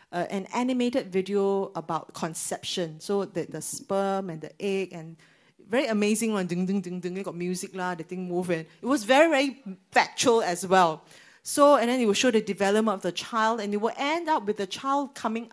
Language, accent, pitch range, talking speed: English, Malaysian, 175-250 Hz, 215 wpm